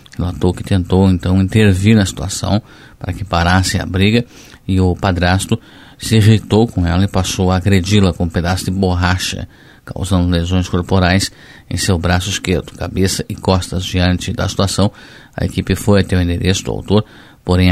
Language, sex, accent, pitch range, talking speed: Portuguese, male, Brazilian, 90-105 Hz, 170 wpm